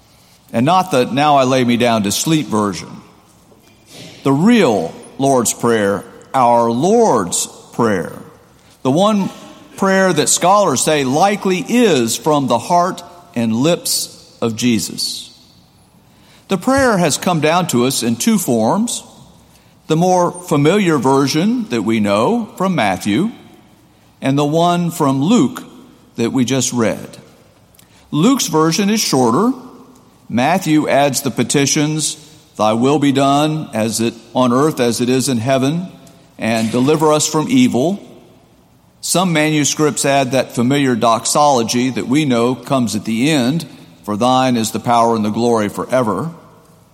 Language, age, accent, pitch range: English, 50-69, American, 120-180 Hz